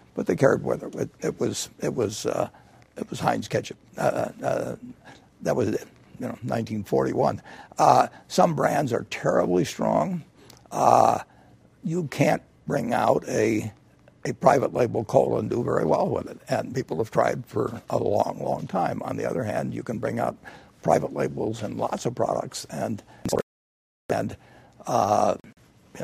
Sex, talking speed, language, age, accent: male, 165 wpm, English, 60-79, American